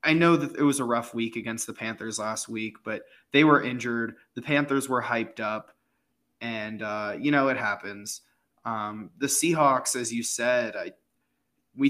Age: 20-39